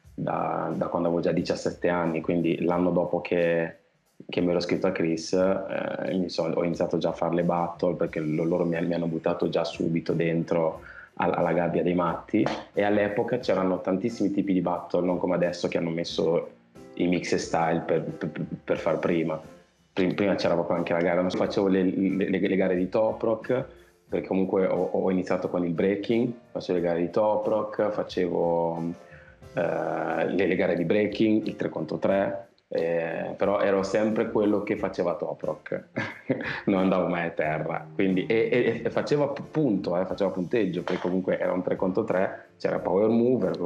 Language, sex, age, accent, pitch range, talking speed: Italian, male, 20-39, native, 85-105 Hz, 185 wpm